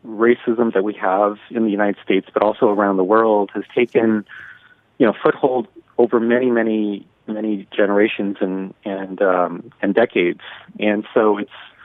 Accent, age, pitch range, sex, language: American, 40-59, 100-115 Hz, male, Korean